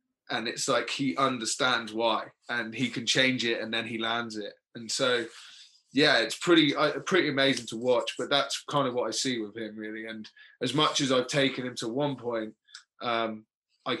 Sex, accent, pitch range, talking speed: male, British, 110-125 Hz, 205 wpm